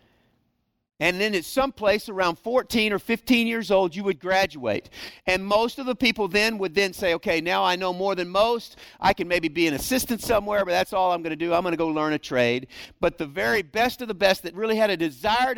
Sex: male